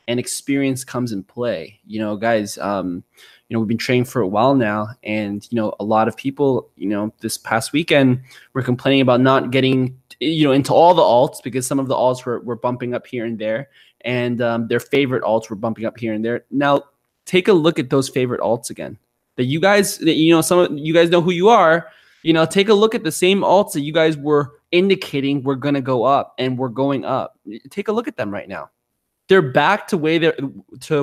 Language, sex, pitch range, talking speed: English, male, 120-160 Hz, 240 wpm